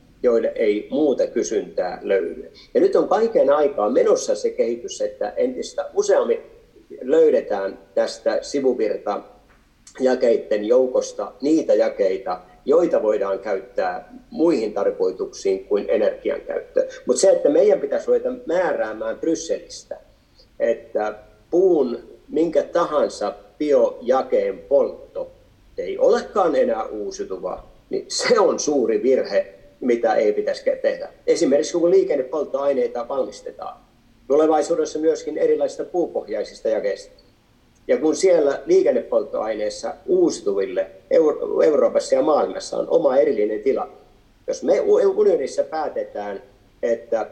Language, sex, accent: Finnish, male, native